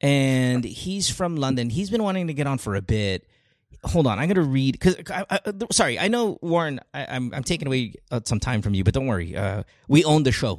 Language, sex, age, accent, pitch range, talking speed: English, male, 30-49, American, 105-155 Hz, 230 wpm